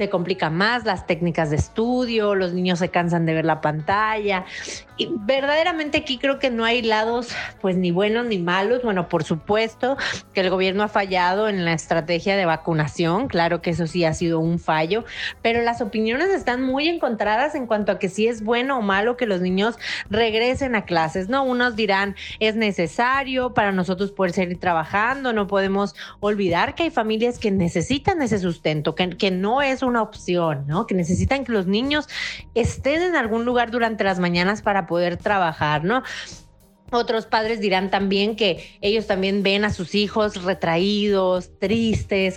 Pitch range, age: 180-230 Hz, 30-49